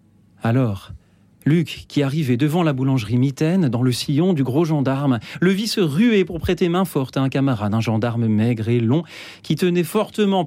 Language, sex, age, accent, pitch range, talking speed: French, male, 40-59, French, 110-170 Hz, 190 wpm